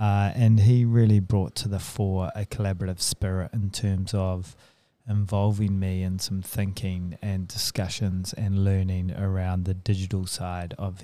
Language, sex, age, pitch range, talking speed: English, male, 20-39, 95-110 Hz, 150 wpm